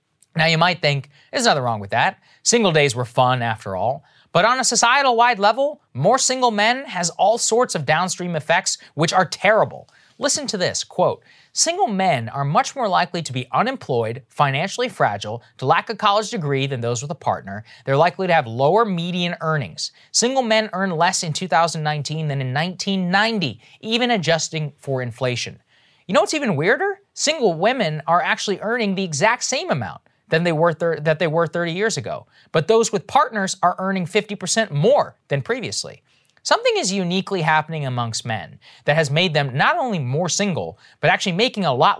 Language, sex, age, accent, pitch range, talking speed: English, male, 20-39, American, 150-215 Hz, 185 wpm